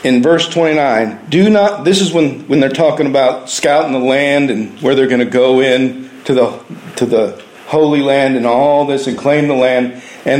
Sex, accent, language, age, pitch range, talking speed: male, American, English, 50-69, 145-185 Hz, 200 wpm